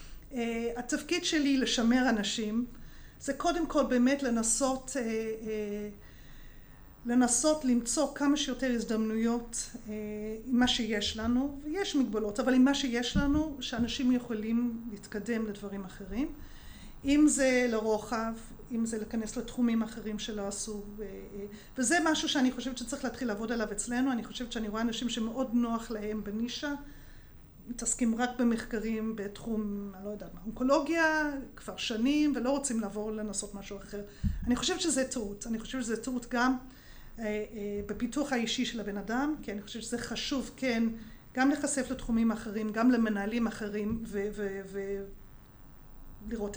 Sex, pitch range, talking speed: female, 220-260 Hz, 140 wpm